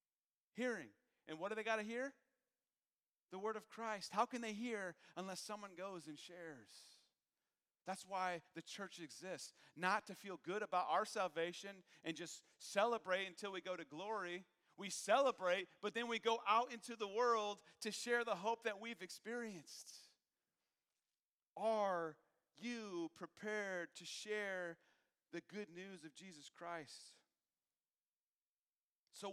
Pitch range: 155-215 Hz